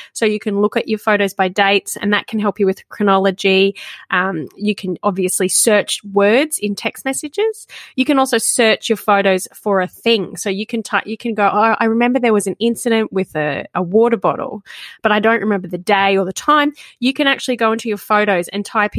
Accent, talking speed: Australian, 225 wpm